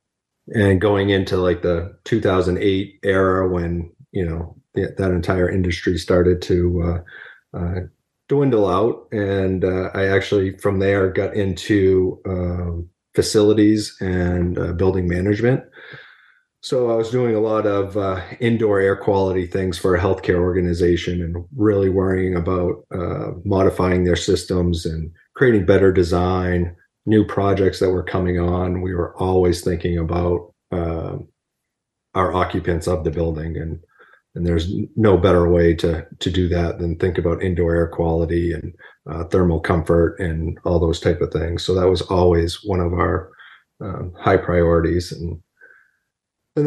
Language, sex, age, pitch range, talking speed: English, male, 30-49, 85-100 Hz, 150 wpm